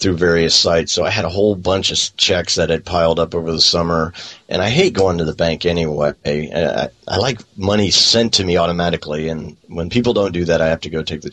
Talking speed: 245 wpm